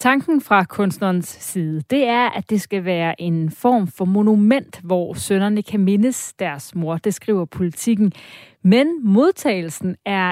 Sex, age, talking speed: female, 30-49, 150 wpm